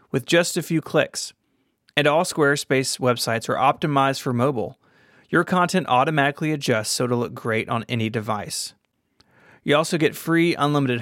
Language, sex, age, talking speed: English, male, 30-49, 160 wpm